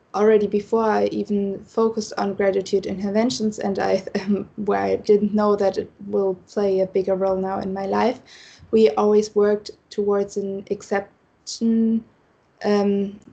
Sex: female